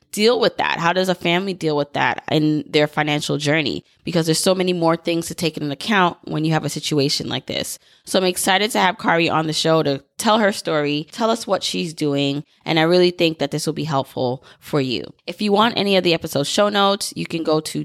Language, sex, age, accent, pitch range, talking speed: English, female, 20-39, American, 150-180 Hz, 245 wpm